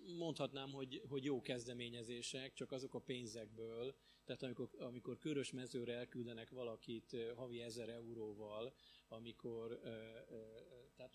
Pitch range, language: 115-135 Hz, Hungarian